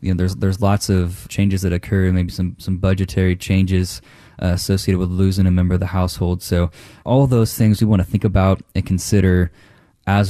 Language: English